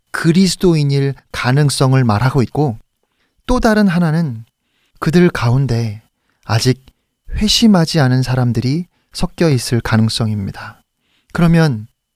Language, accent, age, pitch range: Korean, native, 40-59, 125-190 Hz